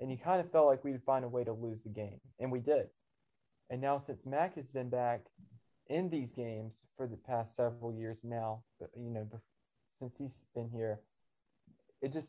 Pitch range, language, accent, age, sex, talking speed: 120-140 Hz, English, American, 20-39, male, 200 wpm